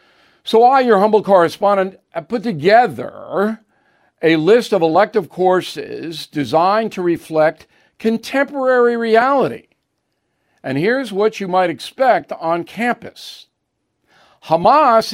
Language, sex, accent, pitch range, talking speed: English, male, American, 160-220 Hz, 105 wpm